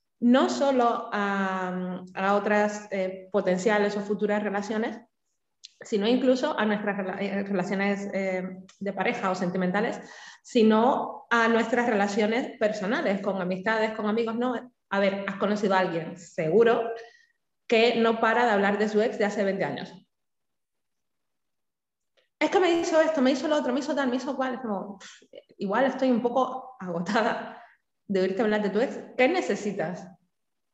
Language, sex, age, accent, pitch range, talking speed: Spanish, female, 20-39, Spanish, 195-235 Hz, 160 wpm